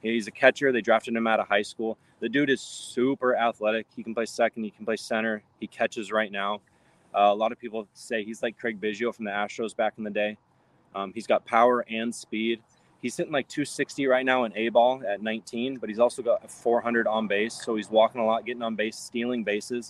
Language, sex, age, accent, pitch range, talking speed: English, male, 20-39, American, 105-120 Hz, 230 wpm